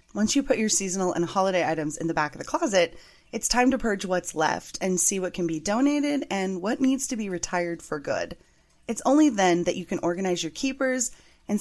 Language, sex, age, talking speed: English, female, 20-39, 225 wpm